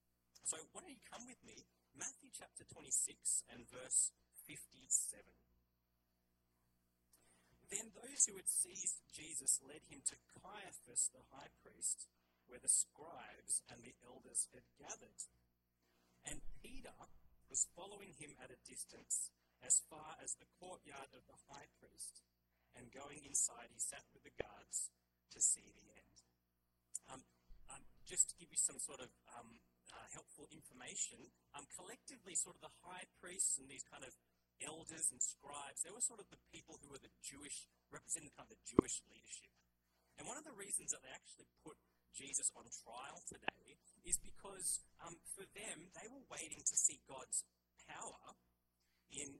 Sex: male